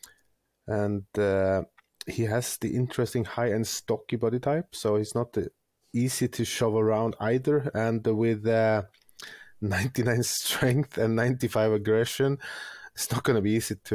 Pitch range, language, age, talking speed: 105-125 Hz, English, 30-49, 140 wpm